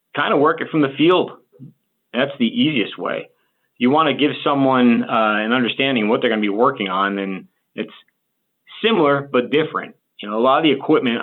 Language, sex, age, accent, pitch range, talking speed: English, male, 30-49, American, 105-140 Hz, 200 wpm